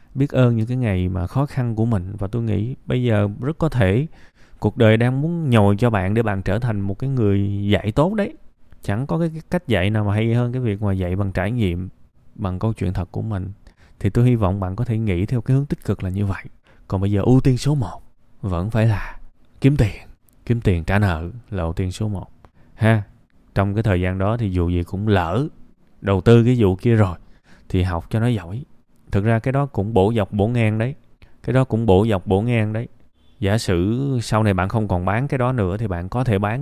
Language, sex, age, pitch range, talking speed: Vietnamese, male, 20-39, 95-120 Hz, 245 wpm